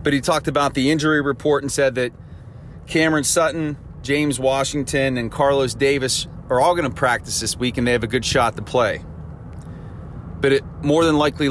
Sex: male